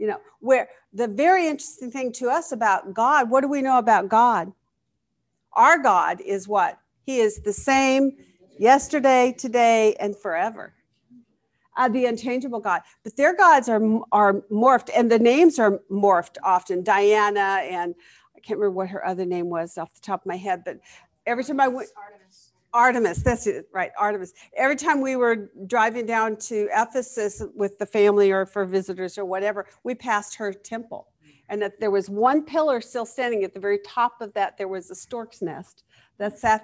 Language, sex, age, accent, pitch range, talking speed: English, female, 50-69, American, 200-260 Hz, 180 wpm